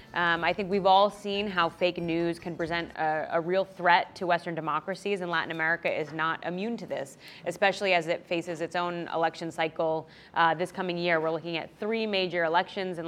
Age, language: 20-39, English